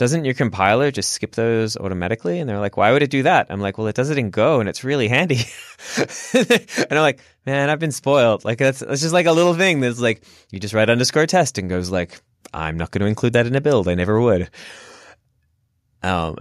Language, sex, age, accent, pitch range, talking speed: English, male, 20-39, American, 85-115 Hz, 240 wpm